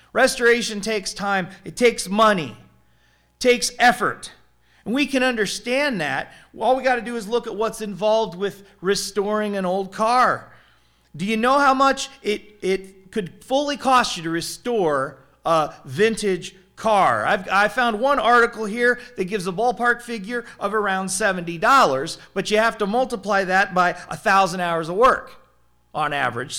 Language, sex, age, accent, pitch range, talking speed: English, male, 40-59, American, 170-235 Hz, 165 wpm